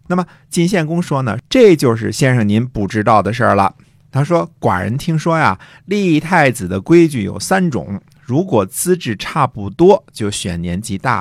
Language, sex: Chinese, male